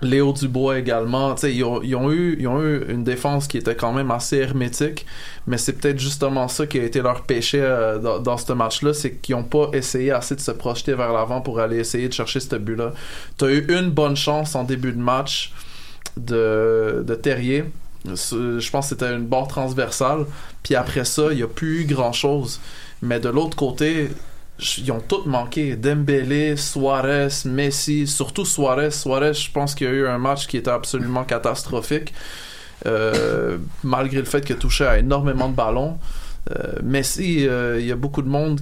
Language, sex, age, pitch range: French, male, 20-39, 125-145 Hz